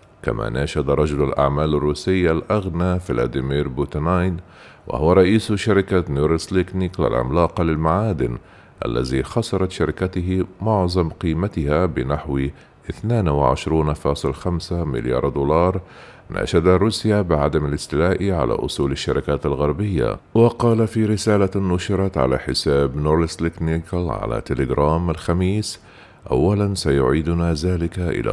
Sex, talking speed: male, 95 wpm